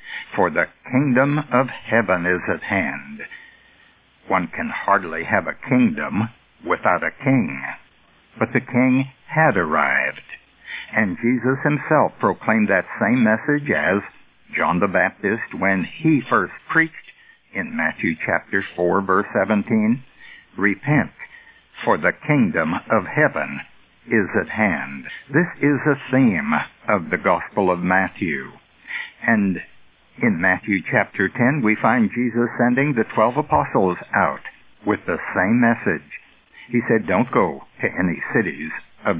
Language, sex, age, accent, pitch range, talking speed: English, male, 60-79, American, 110-150 Hz, 130 wpm